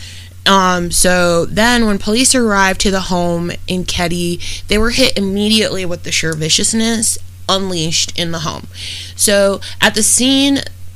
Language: English